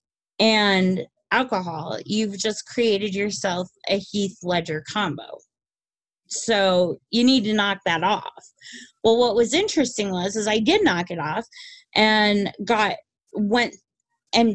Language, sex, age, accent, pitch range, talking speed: English, female, 30-49, American, 200-245 Hz, 130 wpm